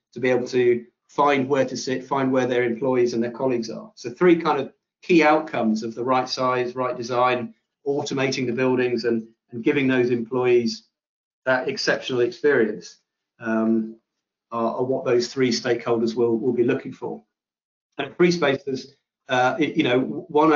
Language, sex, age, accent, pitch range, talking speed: English, male, 40-59, British, 115-135 Hz, 170 wpm